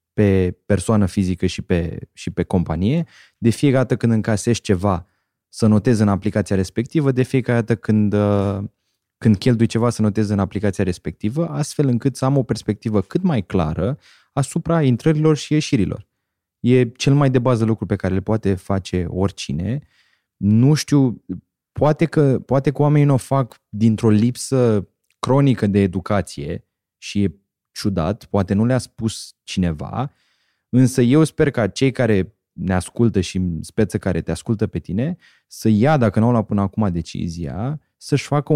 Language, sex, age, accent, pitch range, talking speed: Romanian, male, 20-39, native, 100-130 Hz, 165 wpm